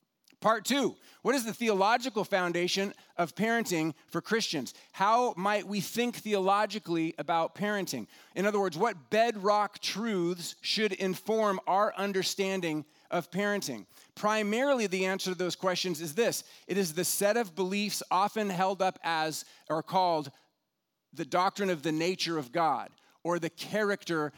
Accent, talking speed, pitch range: American, 150 wpm, 170-210 Hz